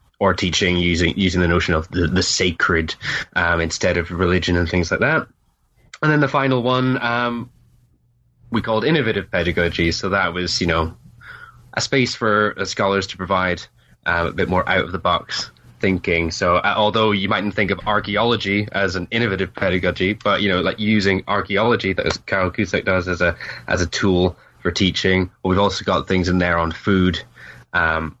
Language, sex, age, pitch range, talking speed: English, male, 20-39, 85-105 Hz, 190 wpm